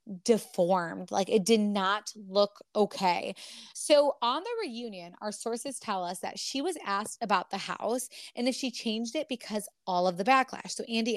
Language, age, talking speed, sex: English, 20-39, 185 wpm, female